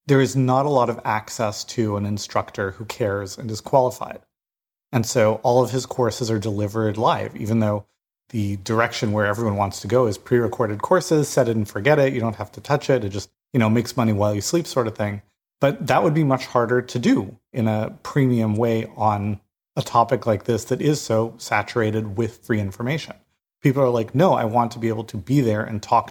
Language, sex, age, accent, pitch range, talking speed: English, male, 30-49, American, 105-125 Hz, 225 wpm